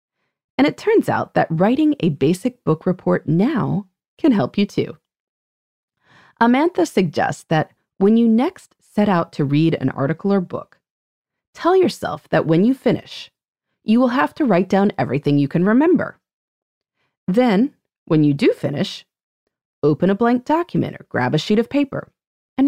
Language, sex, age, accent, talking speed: English, female, 30-49, American, 160 wpm